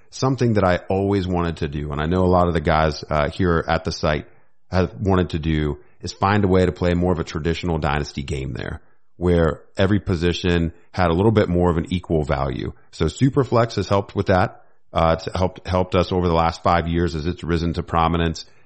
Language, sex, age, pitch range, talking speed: English, male, 40-59, 85-105 Hz, 225 wpm